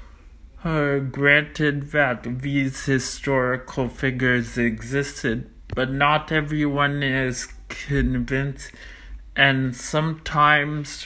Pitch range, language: 125-150 Hz, English